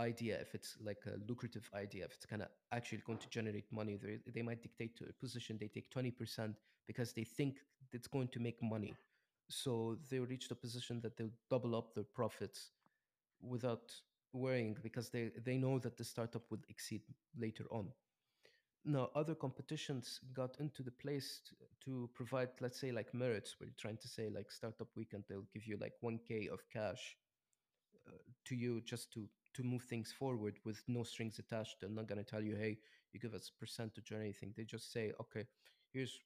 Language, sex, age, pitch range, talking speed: English, male, 30-49, 110-130 Hz, 195 wpm